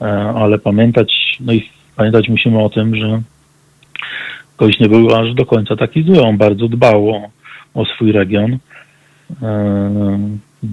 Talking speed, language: 140 wpm, Polish